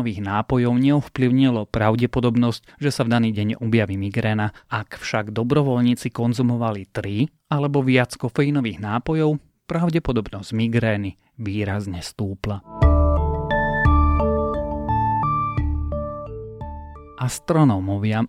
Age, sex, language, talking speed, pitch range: 30-49, male, Slovak, 80 wpm, 105-135 Hz